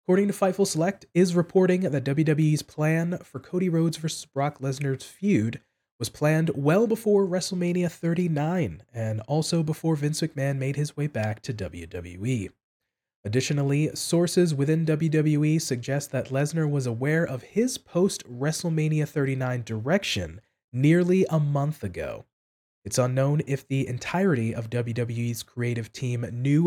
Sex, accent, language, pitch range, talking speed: male, American, English, 125-165 Hz, 135 wpm